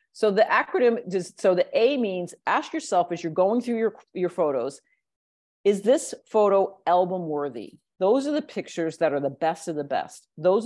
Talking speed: 190 wpm